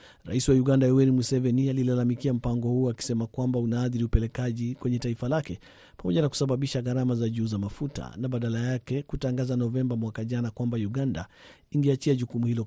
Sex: male